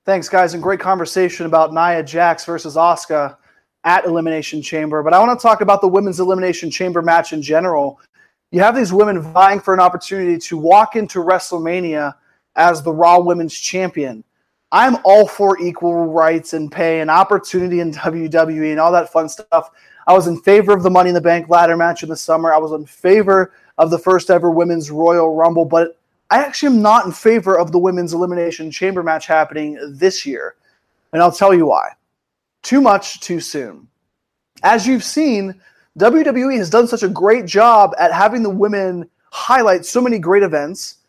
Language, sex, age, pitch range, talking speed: English, male, 20-39, 165-200 Hz, 190 wpm